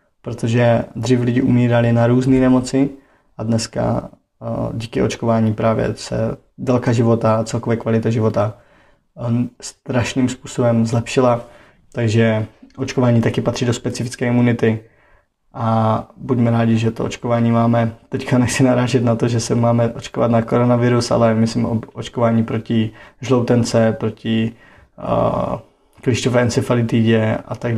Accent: native